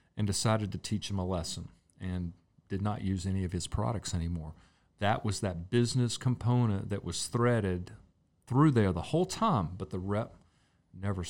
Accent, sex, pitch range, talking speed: American, male, 95-115 Hz, 175 wpm